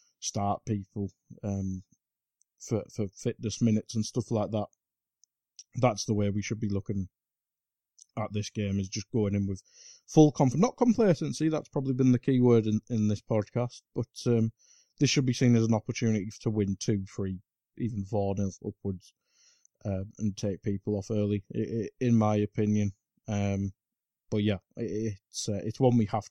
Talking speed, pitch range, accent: 175 wpm, 105-125 Hz, British